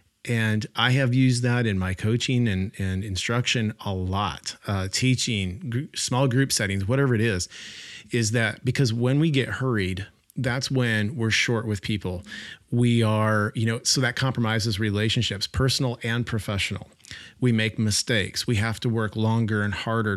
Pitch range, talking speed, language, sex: 105-125 Hz, 165 wpm, English, male